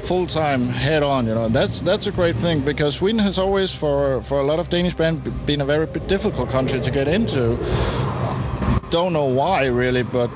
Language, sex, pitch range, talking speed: Swedish, male, 120-155 Hz, 210 wpm